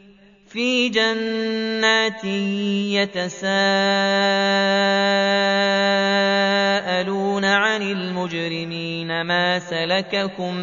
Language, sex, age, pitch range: Arabic, male, 30-49, 195-225 Hz